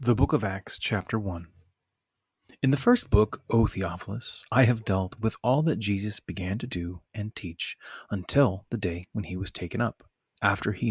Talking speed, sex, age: 185 wpm, male, 30-49